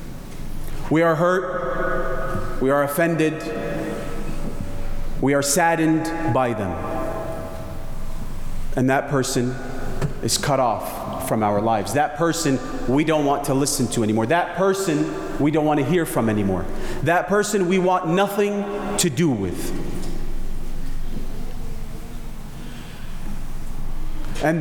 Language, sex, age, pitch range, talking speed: English, male, 40-59, 115-165 Hz, 115 wpm